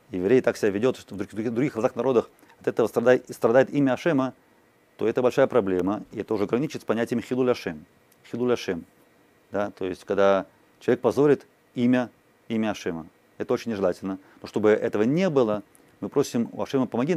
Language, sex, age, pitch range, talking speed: Russian, male, 30-49, 105-130 Hz, 175 wpm